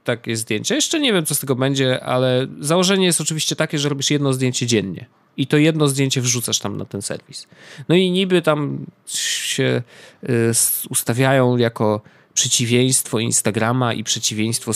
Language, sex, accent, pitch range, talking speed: Polish, male, native, 115-150 Hz, 160 wpm